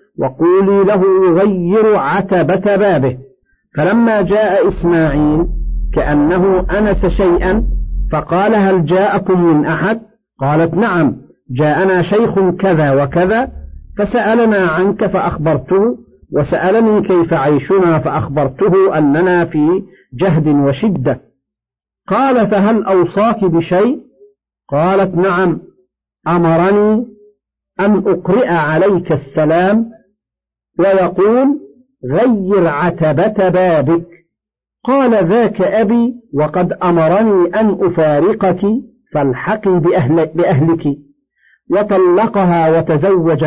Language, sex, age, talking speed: Arabic, male, 50-69, 85 wpm